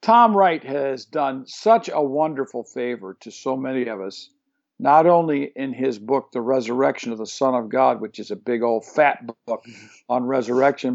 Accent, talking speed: American, 185 wpm